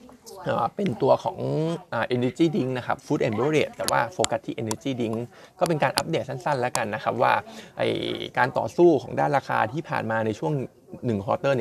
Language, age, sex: Thai, 20-39, male